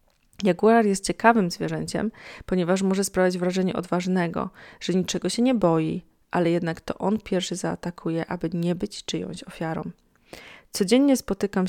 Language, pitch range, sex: Polish, 175-210 Hz, female